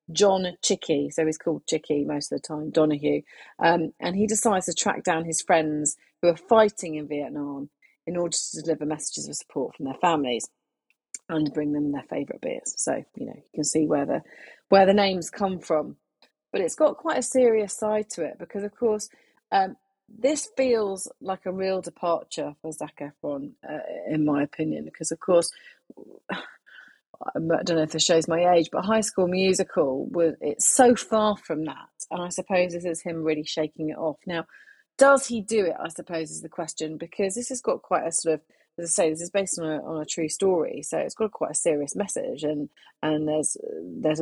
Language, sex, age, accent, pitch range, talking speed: English, female, 30-49, British, 155-200 Hz, 205 wpm